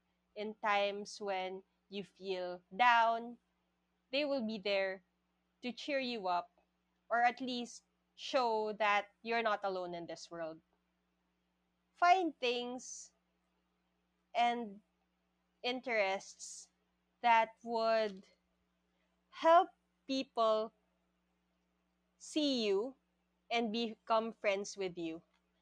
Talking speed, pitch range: 95 wpm, 160-235 Hz